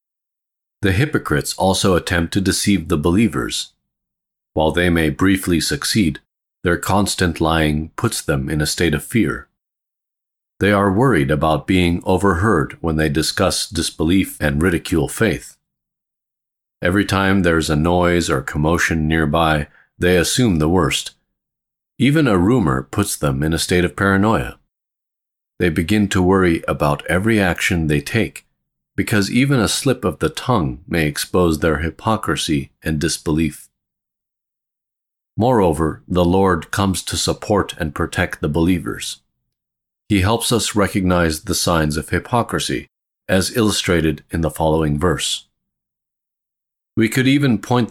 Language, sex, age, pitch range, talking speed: English, male, 40-59, 80-100 Hz, 135 wpm